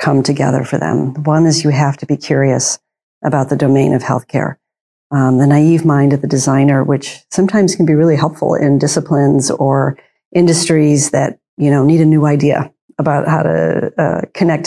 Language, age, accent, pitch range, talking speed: English, 50-69, American, 140-155 Hz, 185 wpm